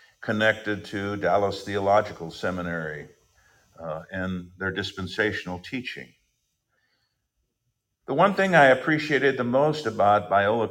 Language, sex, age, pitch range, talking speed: English, male, 50-69, 100-130 Hz, 105 wpm